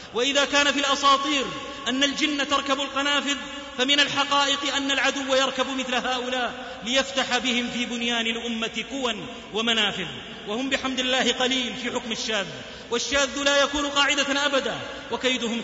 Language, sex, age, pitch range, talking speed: Arabic, male, 30-49, 220-275 Hz, 135 wpm